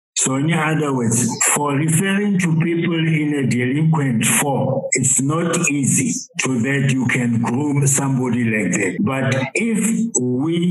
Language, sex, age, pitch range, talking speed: English, male, 60-79, 130-160 Hz, 145 wpm